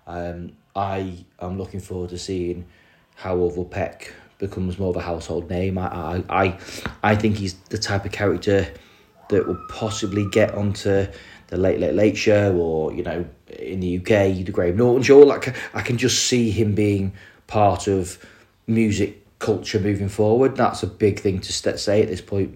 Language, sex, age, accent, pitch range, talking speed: English, male, 30-49, British, 90-110 Hz, 180 wpm